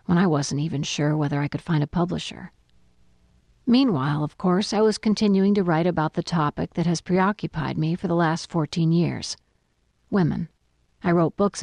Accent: American